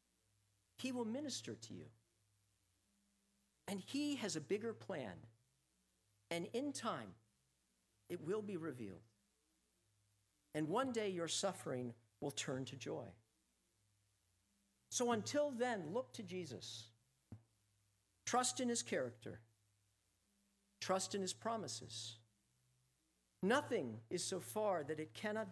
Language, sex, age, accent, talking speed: English, male, 50-69, American, 115 wpm